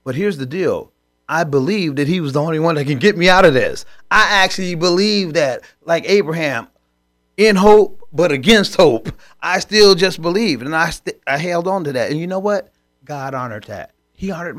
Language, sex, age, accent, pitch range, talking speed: English, male, 30-49, American, 135-200 Hz, 210 wpm